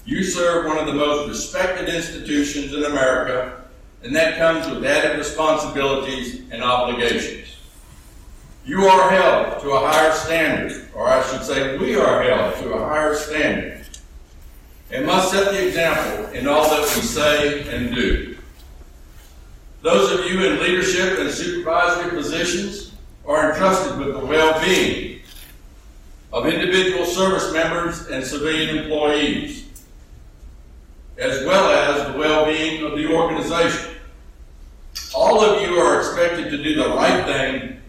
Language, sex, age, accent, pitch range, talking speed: English, male, 60-79, American, 120-165 Hz, 135 wpm